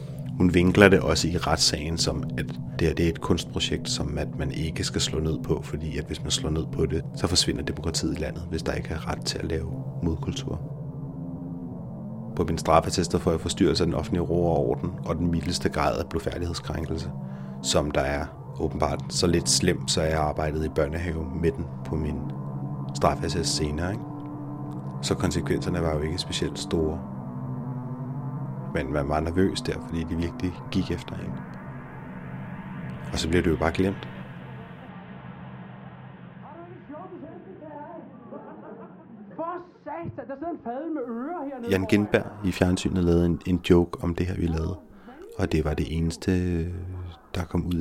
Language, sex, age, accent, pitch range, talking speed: Danish, male, 30-49, native, 80-120 Hz, 155 wpm